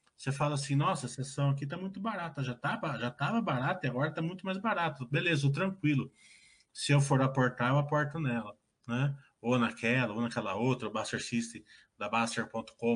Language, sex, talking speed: Portuguese, male, 180 wpm